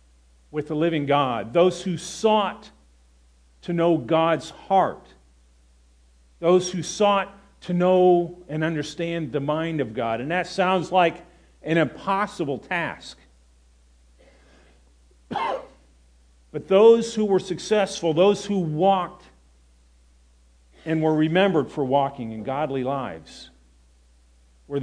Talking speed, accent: 110 wpm, American